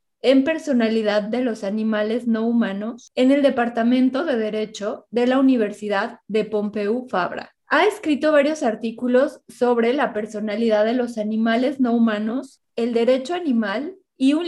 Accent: Mexican